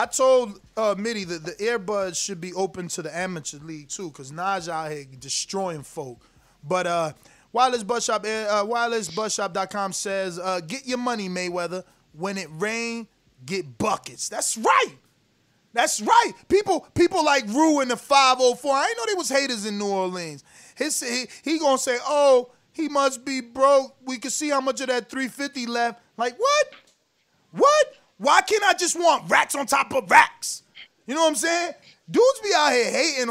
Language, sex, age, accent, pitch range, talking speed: English, male, 20-39, American, 185-275 Hz, 175 wpm